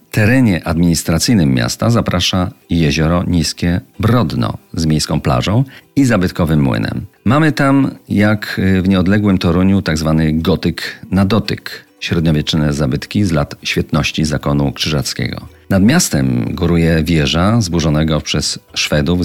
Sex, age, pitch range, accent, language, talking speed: male, 40-59, 80-100 Hz, native, Polish, 120 wpm